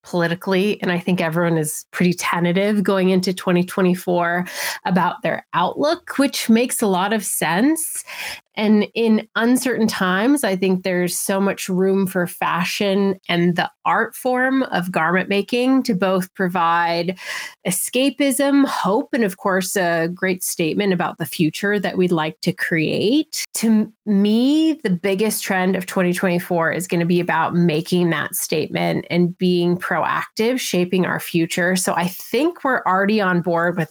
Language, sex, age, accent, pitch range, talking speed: English, female, 30-49, American, 175-205 Hz, 155 wpm